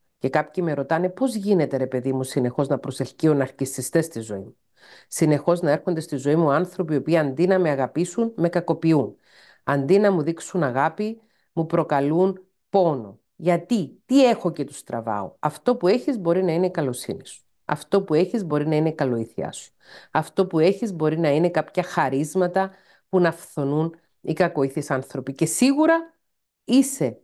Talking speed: 175 wpm